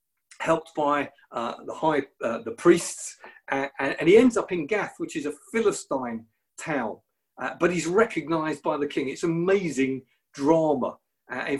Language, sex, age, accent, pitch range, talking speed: English, male, 40-59, British, 140-195 Hz, 170 wpm